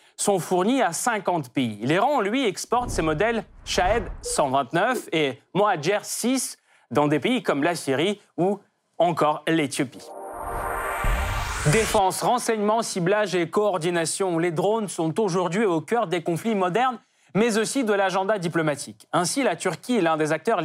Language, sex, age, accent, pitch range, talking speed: French, male, 30-49, French, 160-215 Hz, 140 wpm